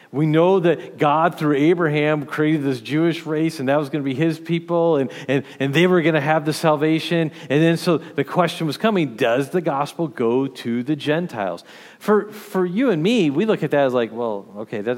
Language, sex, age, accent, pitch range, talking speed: English, male, 50-69, American, 125-165 Hz, 225 wpm